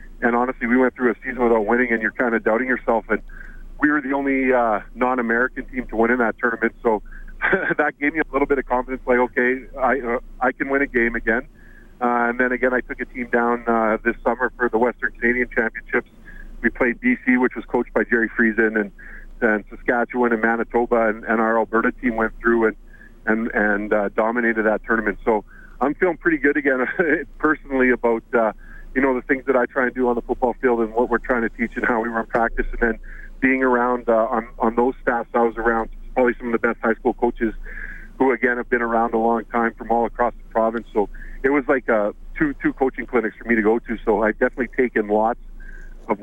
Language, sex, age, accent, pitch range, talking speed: English, male, 40-59, American, 115-125 Hz, 230 wpm